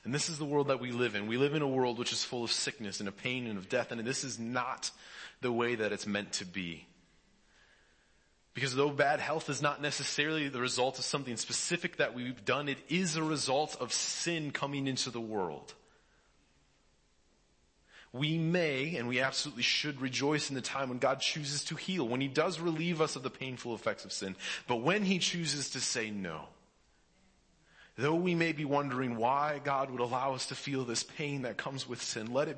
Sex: male